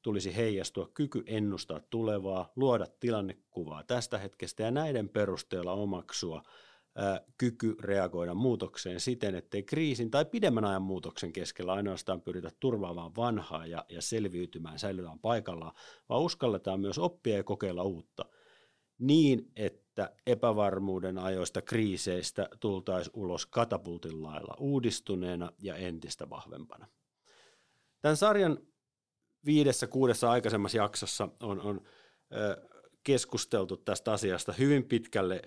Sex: male